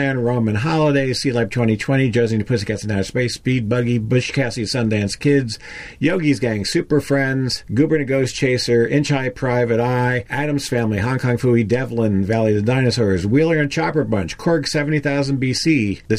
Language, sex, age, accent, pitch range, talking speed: English, male, 50-69, American, 115-150 Hz, 175 wpm